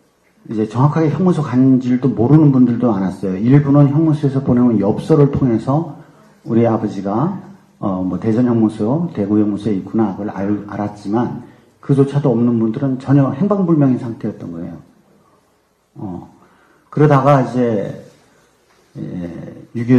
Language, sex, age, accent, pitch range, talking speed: English, male, 50-69, Korean, 100-145 Hz, 105 wpm